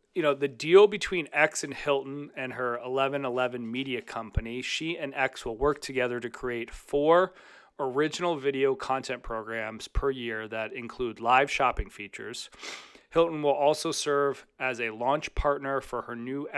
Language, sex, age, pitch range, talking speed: English, male, 30-49, 115-140 Hz, 160 wpm